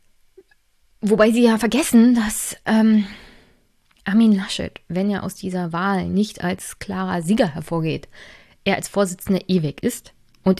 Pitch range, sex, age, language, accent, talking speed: 170-200 Hz, female, 20-39, German, German, 135 wpm